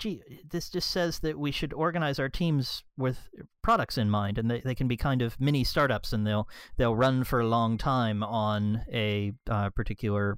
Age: 40-59